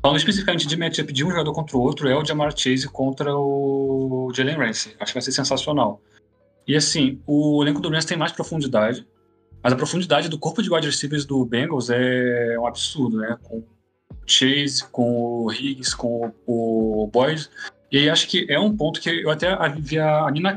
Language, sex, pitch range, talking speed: Portuguese, male, 125-160 Hz, 200 wpm